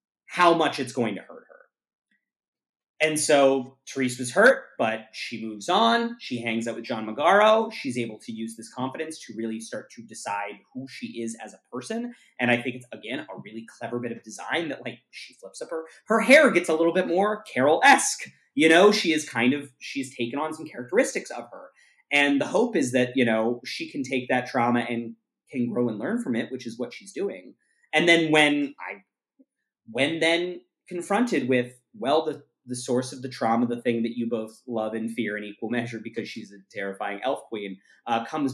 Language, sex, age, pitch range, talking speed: English, male, 30-49, 115-170 Hz, 210 wpm